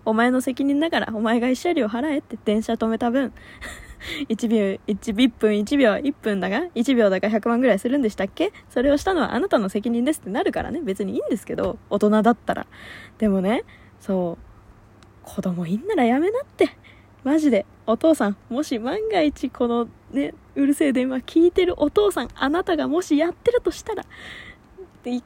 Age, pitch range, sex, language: 20-39, 210-315 Hz, female, Japanese